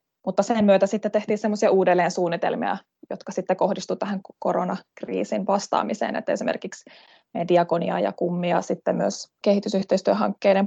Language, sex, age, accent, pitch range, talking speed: Finnish, female, 20-39, native, 180-210 Hz, 125 wpm